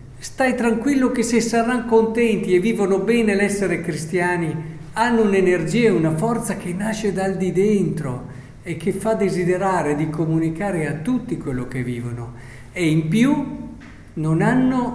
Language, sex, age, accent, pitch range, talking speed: Italian, male, 50-69, native, 130-190 Hz, 150 wpm